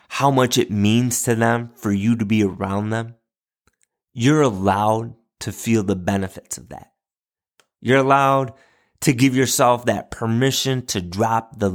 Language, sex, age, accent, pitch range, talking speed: English, male, 30-49, American, 110-135 Hz, 155 wpm